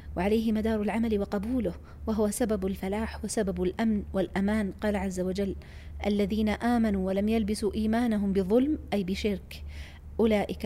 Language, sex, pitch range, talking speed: Arabic, female, 185-220 Hz, 125 wpm